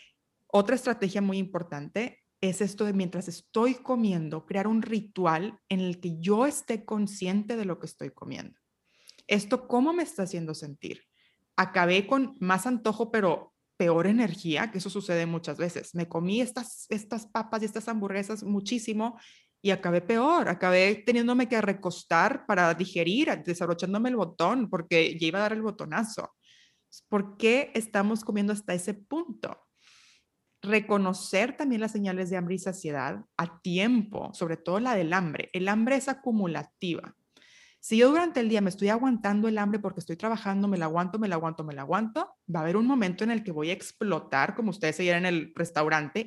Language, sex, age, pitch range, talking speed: Spanish, female, 30-49, 175-225 Hz, 175 wpm